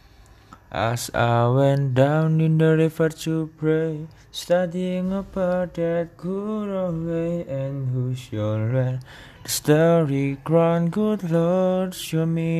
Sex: male